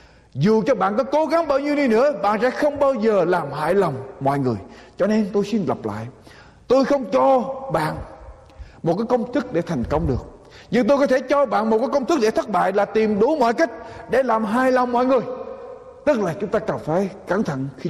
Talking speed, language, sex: 240 wpm, Vietnamese, male